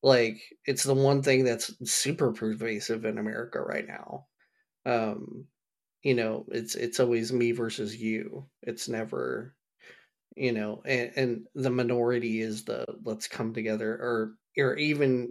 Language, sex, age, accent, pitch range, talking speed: English, male, 30-49, American, 110-125 Hz, 145 wpm